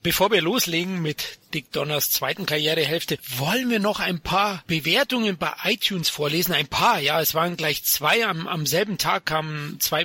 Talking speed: 180 wpm